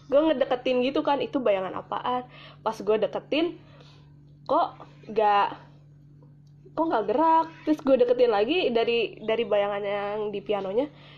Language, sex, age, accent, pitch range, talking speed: Indonesian, female, 20-39, native, 175-275 Hz, 135 wpm